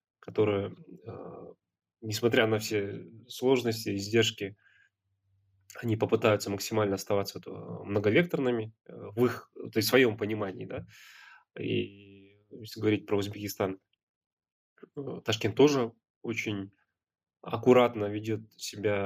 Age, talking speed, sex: 20-39, 90 wpm, male